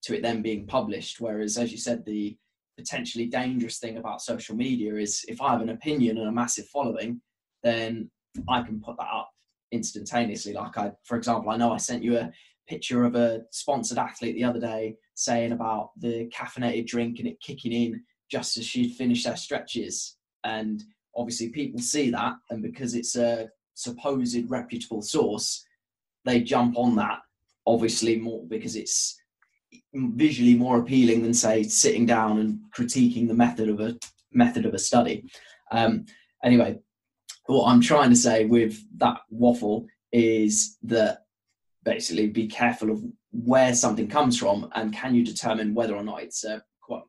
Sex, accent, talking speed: male, British, 170 wpm